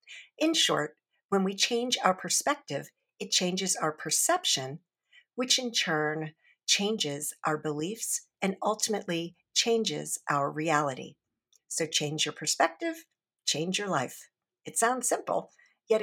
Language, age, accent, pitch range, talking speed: English, 50-69, American, 165-245 Hz, 125 wpm